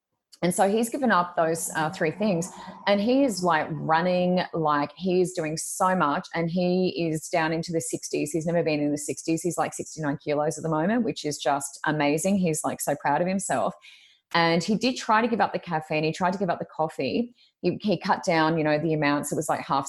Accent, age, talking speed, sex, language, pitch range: Australian, 20-39, 230 wpm, female, English, 155-190 Hz